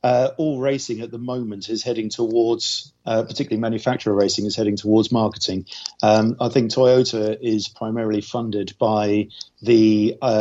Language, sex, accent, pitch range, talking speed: English, male, British, 105-115 Hz, 155 wpm